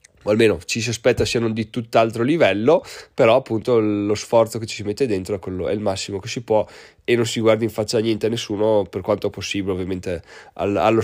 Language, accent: Italian, native